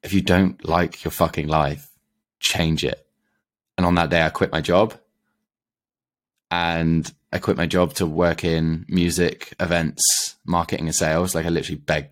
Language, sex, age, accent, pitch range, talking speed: English, male, 20-39, British, 80-90 Hz, 170 wpm